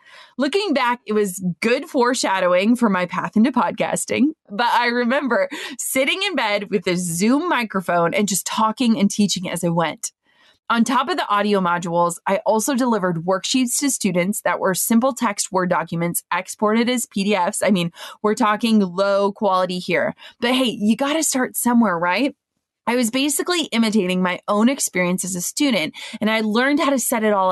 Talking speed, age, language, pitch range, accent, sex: 180 wpm, 20-39, English, 185-255 Hz, American, female